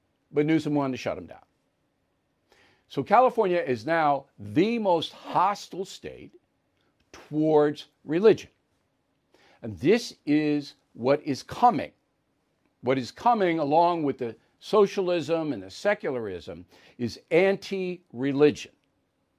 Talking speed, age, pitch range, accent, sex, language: 110 wpm, 60-79, 140-195 Hz, American, male, English